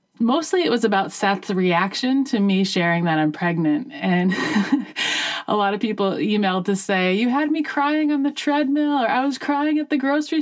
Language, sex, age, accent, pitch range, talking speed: English, female, 30-49, American, 180-260 Hz, 195 wpm